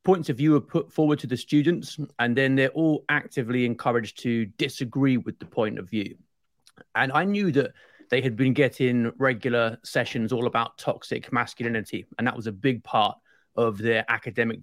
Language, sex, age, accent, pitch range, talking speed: English, male, 30-49, British, 120-150 Hz, 185 wpm